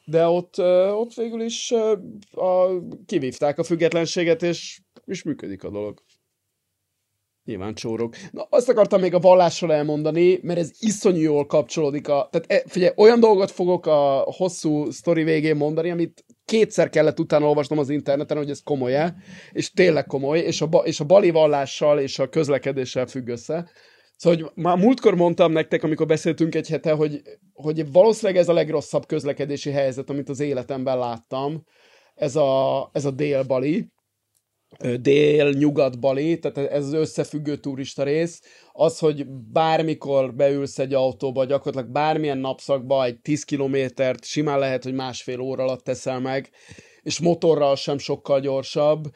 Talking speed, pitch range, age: 155 wpm, 135-170 Hz, 30-49